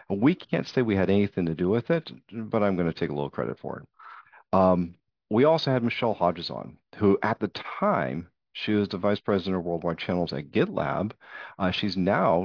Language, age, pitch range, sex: English, 50-69, 85-100 Hz, male